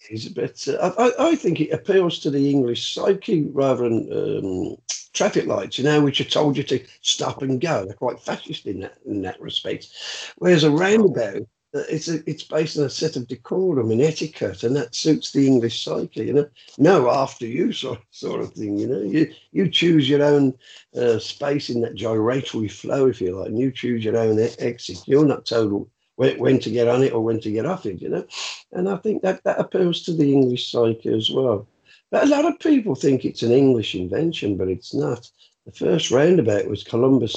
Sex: male